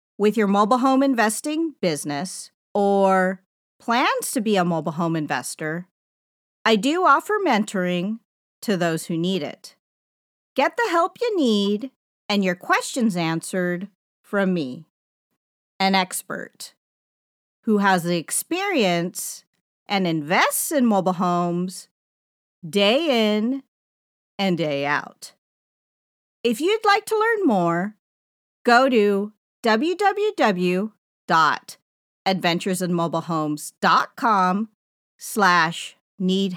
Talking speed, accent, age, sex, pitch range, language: 100 wpm, American, 40-59, female, 180-255 Hz, English